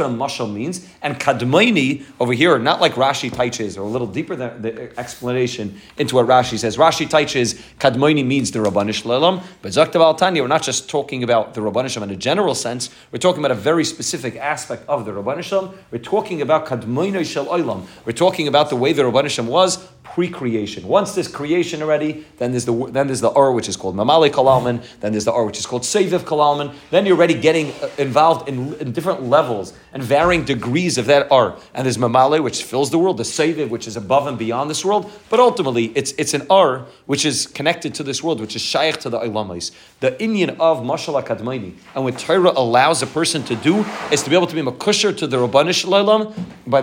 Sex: male